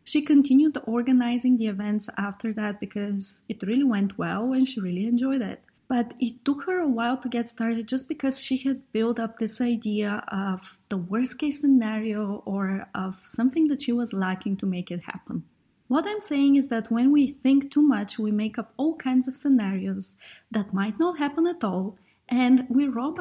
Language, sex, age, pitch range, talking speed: English, female, 30-49, 210-275 Hz, 195 wpm